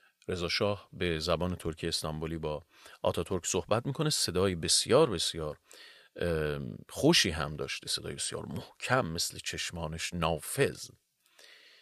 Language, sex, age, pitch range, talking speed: Persian, male, 30-49, 85-115 Hz, 115 wpm